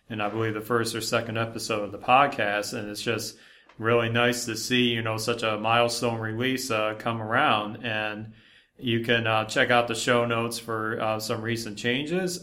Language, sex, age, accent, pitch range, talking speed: English, male, 30-49, American, 110-120 Hz, 200 wpm